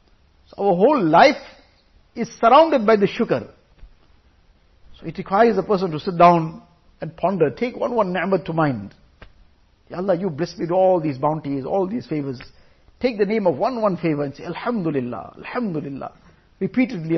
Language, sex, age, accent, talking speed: English, male, 50-69, Indian, 170 wpm